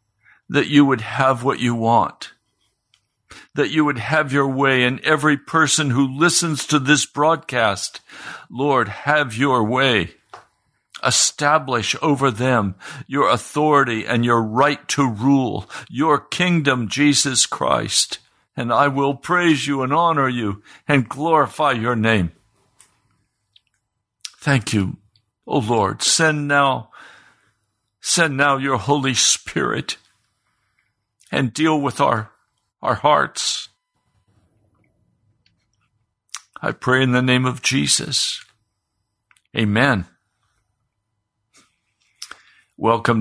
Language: English